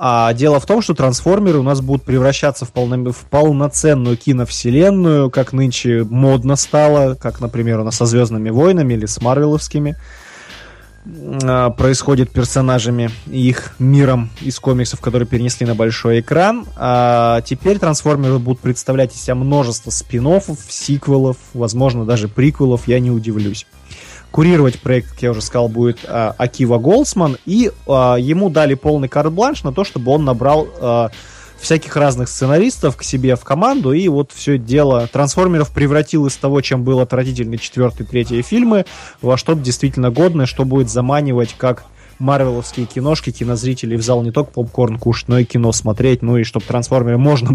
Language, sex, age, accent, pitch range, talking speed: Russian, male, 20-39, native, 120-145 Hz, 155 wpm